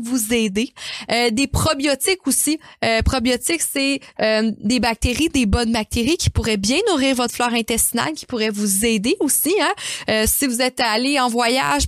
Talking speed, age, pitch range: 170 wpm, 20-39, 220-270 Hz